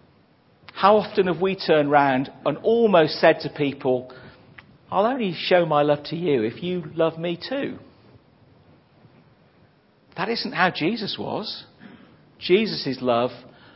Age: 50-69